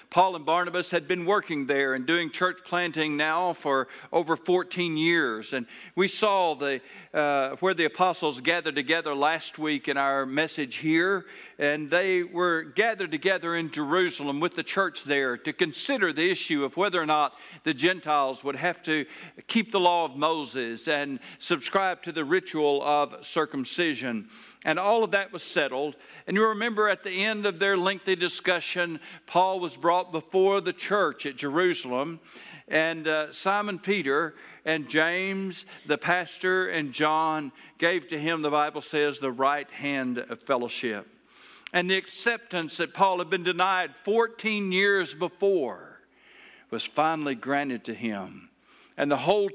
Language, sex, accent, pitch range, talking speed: English, male, American, 150-190 Hz, 160 wpm